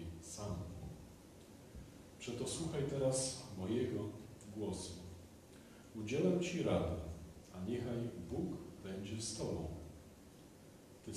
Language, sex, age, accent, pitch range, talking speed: Polish, male, 40-59, native, 90-125 Hz, 80 wpm